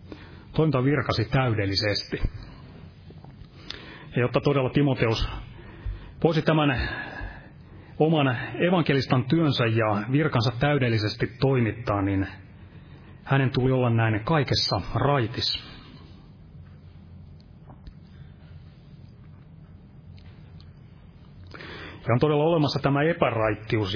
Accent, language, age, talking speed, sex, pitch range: native, Finnish, 30-49, 75 wpm, male, 100-130 Hz